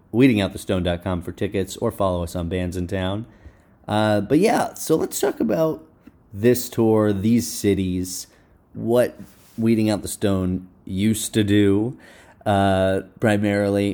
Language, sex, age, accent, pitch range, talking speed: English, male, 30-49, American, 90-105 Hz, 135 wpm